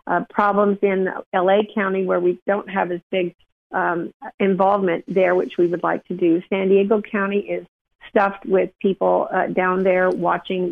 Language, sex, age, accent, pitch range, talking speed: English, female, 50-69, American, 180-210 Hz, 175 wpm